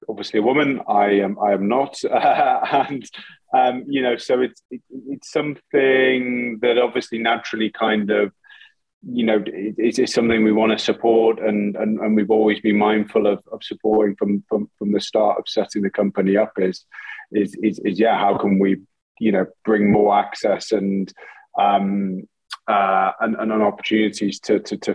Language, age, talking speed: English, 30-49, 180 wpm